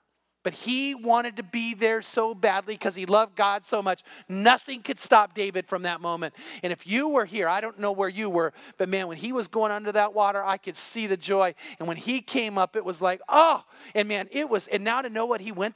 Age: 40-59